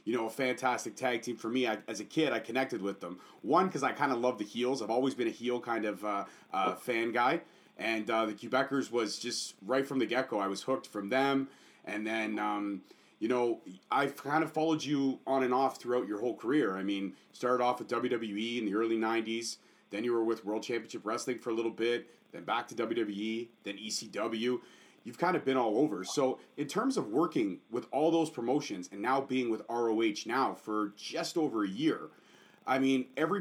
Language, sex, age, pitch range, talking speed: English, male, 30-49, 110-135 Hz, 220 wpm